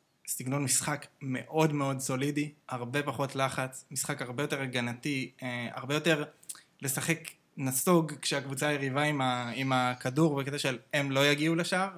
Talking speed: 140 wpm